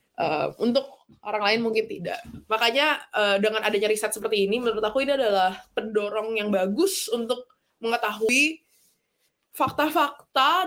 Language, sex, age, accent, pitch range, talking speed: Indonesian, female, 20-39, native, 195-255 Hz, 130 wpm